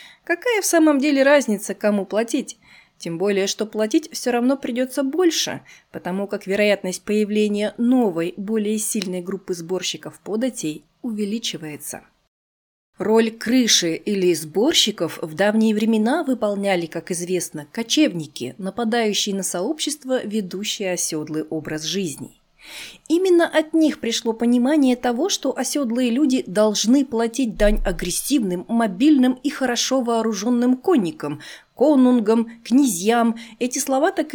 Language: Russian